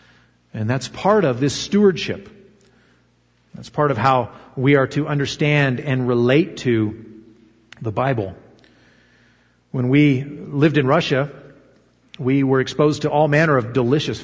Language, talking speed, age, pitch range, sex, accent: English, 135 wpm, 40-59, 115-155 Hz, male, American